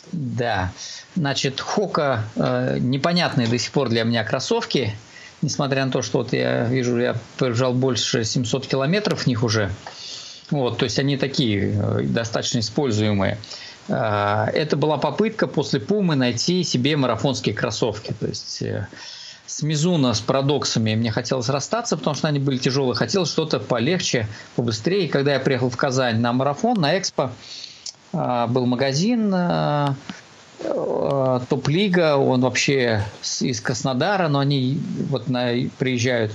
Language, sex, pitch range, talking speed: Russian, male, 120-150 Hz, 135 wpm